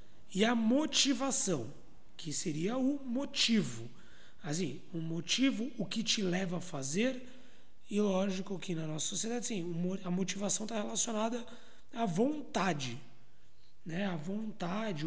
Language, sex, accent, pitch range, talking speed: Portuguese, male, Brazilian, 165-240 Hz, 125 wpm